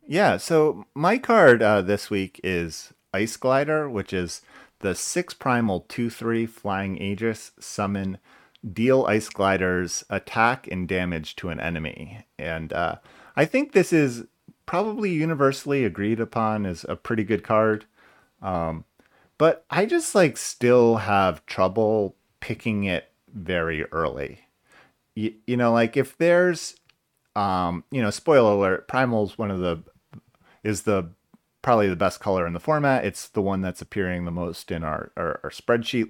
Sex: male